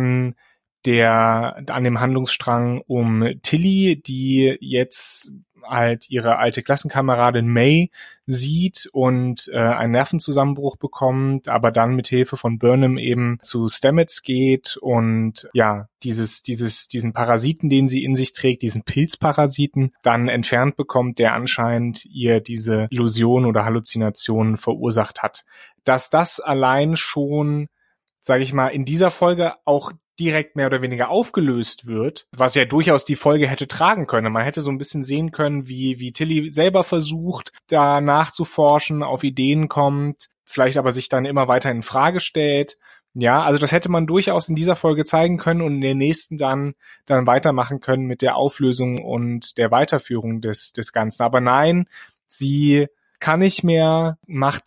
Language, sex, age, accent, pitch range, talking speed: German, male, 30-49, German, 120-150 Hz, 155 wpm